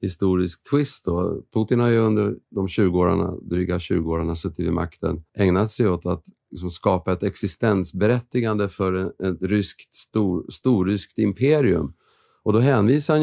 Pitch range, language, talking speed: 90-110 Hz, Swedish, 150 wpm